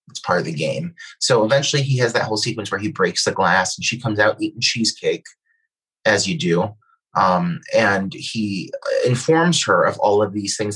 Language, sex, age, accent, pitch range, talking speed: English, male, 30-49, American, 120-185 Hz, 195 wpm